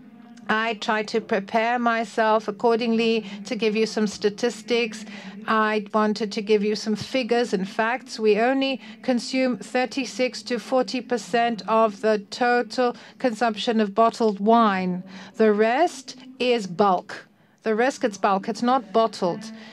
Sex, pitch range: female, 210-245 Hz